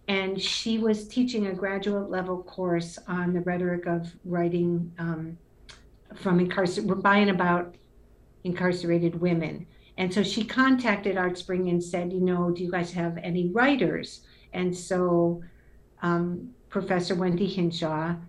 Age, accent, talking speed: 60-79, American, 135 wpm